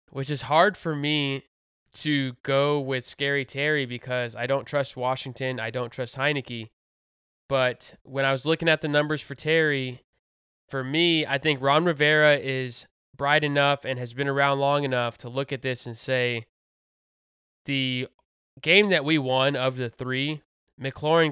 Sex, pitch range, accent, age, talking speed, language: male, 120-140 Hz, American, 20-39, 165 wpm, English